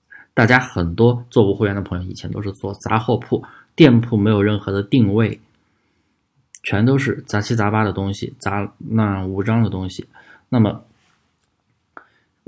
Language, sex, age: Chinese, male, 20-39